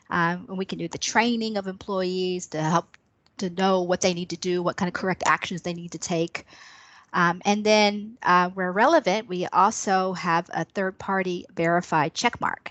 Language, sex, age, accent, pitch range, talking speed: English, female, 40-59, American, 180-220 Hz, 190 wpm